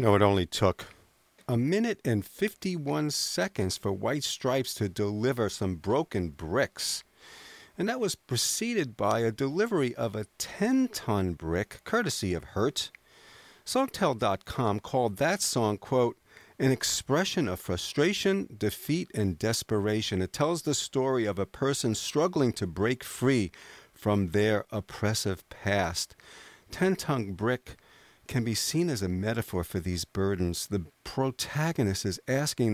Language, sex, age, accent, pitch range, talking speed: English, male, 50-69, American, 95-140 Hz, 135 wpm